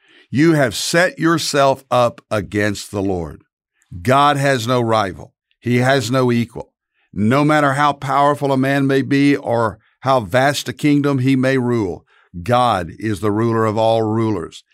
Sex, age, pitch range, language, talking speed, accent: male, 60-79, 110-145 Hz, English, 160 wpm, American